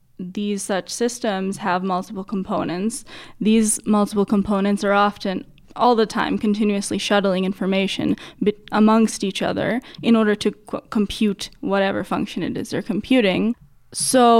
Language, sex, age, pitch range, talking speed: English, female, 10-29, 190-220 Hz, 130 wpm